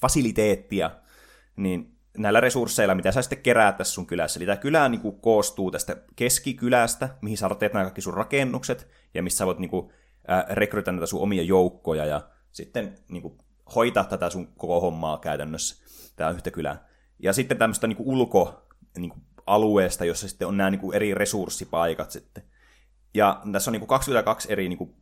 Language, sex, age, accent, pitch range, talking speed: Finnish, male, 20-39, native, 90-105 Hz, 175 wpm